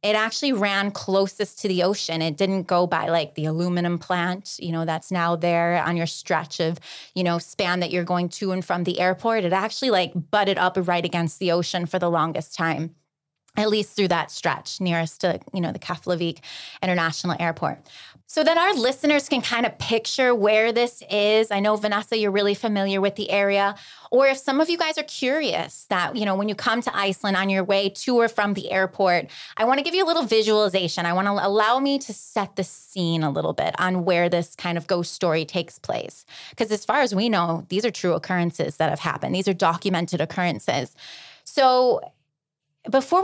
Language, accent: English, American